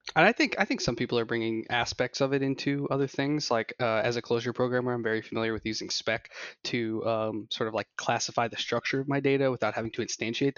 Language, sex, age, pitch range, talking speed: English, male, 20-39, 115-140 Hz, 240 wpm